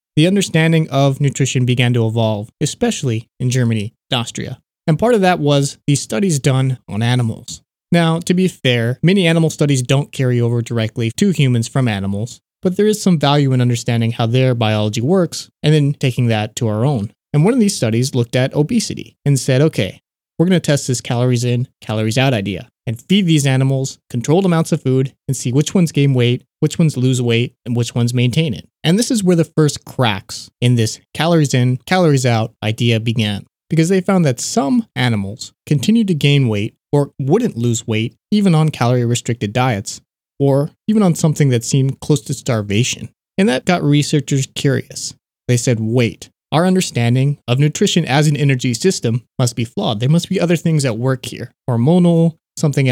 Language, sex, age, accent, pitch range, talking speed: English, male, 30-49, American, 120-160 Hz, 195 wpm